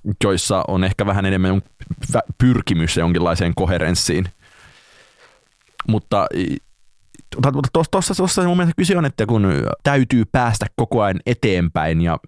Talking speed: 110 wpm